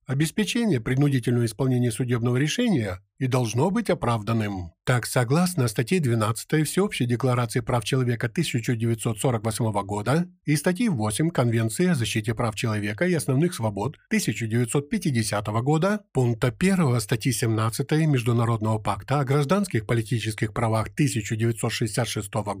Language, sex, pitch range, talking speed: Ukrainian, male, 115-155 Hz, 115 wpm